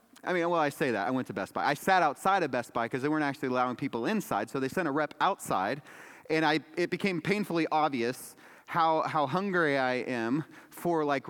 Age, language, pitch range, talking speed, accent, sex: 30-49, English, 150-225 Hz, 230 wpm, American, male